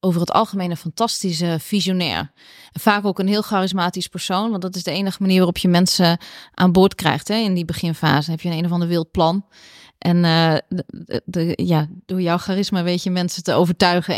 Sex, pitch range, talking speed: female, 165-200 Hz, 205 wpm